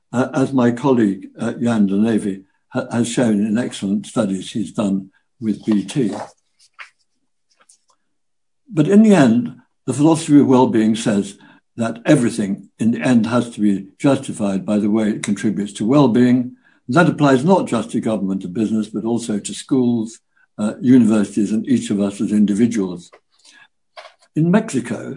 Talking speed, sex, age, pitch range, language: 155 wpm, male, 60-79, 110-145 Hz, English